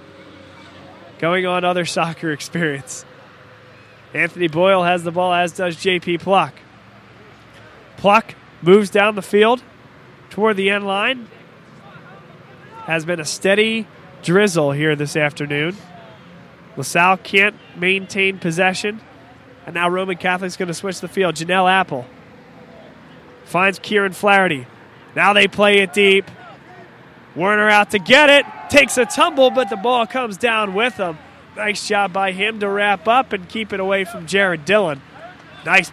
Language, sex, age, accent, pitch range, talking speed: English, male, 20-39, American, 165-200 Hz, 140 wpm